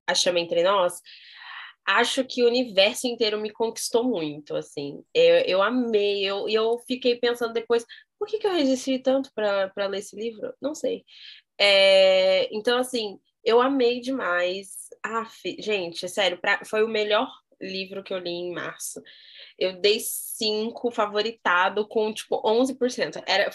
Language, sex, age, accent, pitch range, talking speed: Portuguese, female, 10-29, Brazilian, 190-255 Hz, 145 wpm